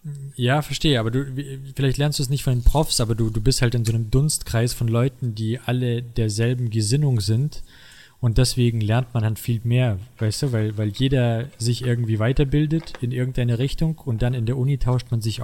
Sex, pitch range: male, 115-135 Hz